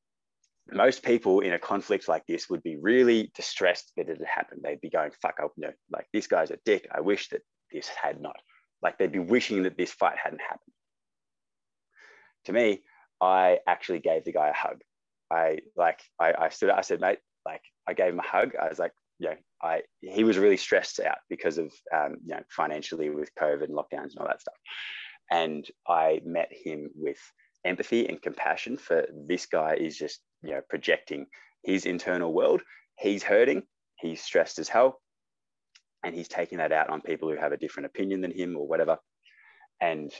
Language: English